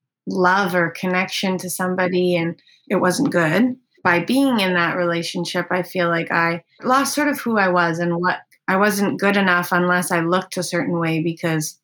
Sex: female